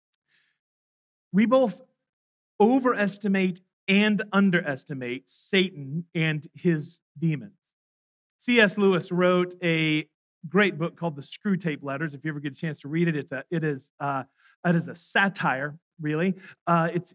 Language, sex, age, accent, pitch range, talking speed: English, male, 40-59, American, 165-205 Hz, 140 wpm